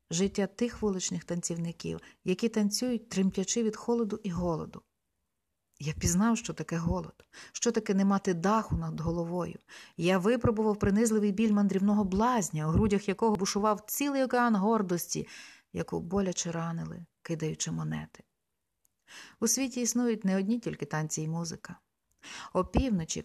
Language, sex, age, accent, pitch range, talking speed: Ukrainian, female, 40-59, native, 170-225 Hz, 130 wpm